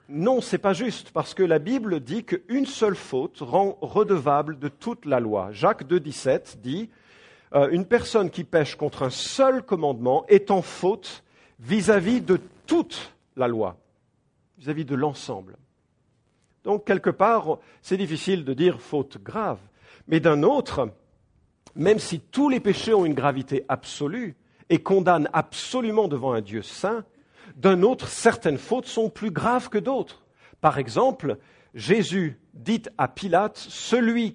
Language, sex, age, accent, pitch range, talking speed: English, male, 50-69, French, 150-220 Hz, 155 wpm